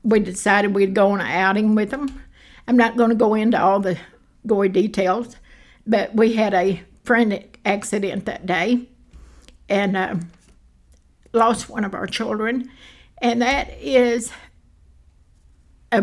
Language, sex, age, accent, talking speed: English, female, 60-79, American, 140 wpm